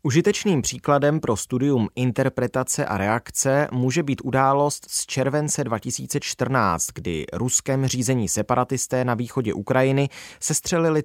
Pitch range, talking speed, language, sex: 110-145 Hz, 115 wpm, Czech, male